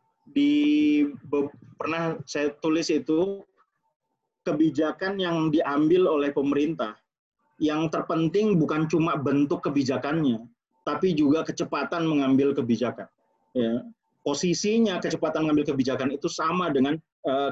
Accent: native